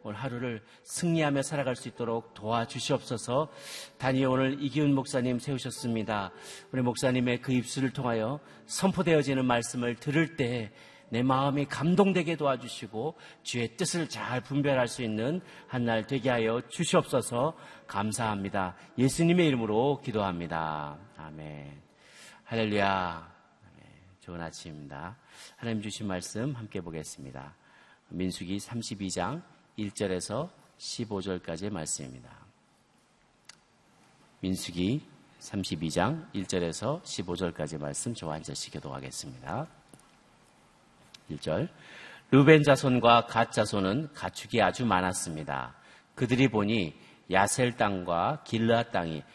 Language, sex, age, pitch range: Korean, male, 40-59, 90-130 Hz